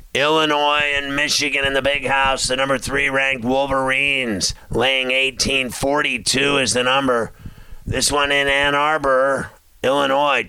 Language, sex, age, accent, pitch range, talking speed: English, male, 50-69, American, 130-145 Hz, 145 wpm